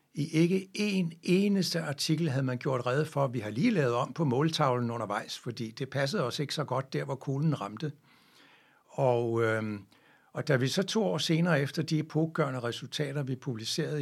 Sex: male